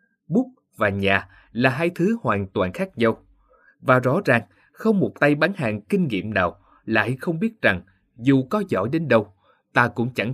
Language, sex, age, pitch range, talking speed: Vietnamese, male, 20-39, 105-165 Hz, 190 wpm